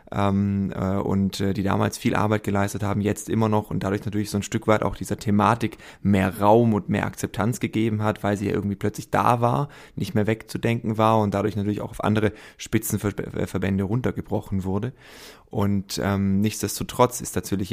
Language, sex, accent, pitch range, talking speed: German, male, German, 100-120 Hz, 175 wpm